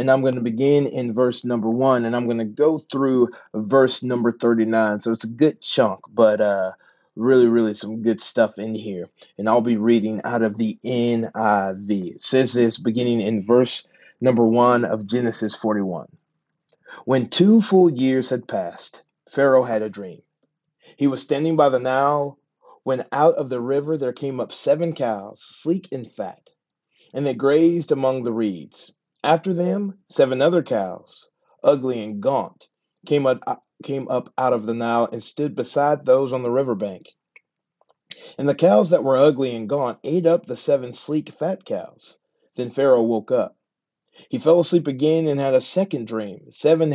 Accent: American